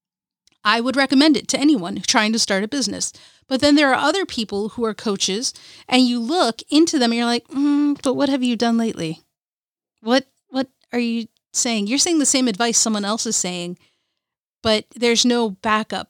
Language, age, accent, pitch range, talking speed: English, 40-59, American, 210-255 Hz, 200 wpm